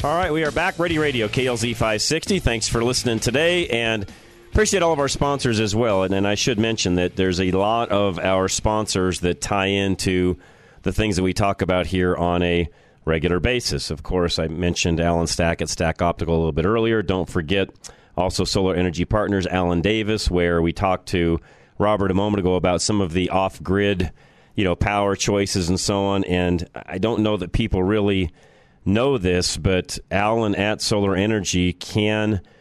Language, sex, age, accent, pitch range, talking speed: English, male, 40-59, American, 90-105 Hz, 190 wpm